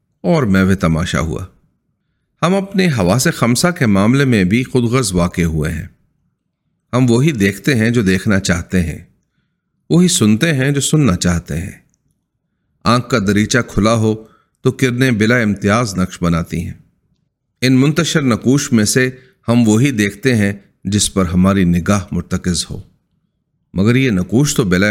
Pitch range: 95-130 Hz